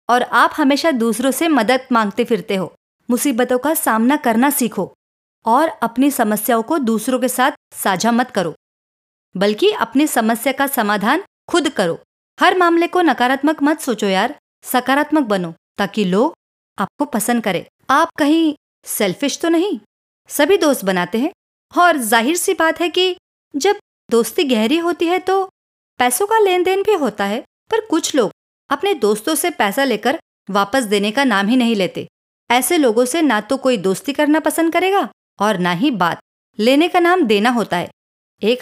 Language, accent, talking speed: Hindi, native, 170 wpm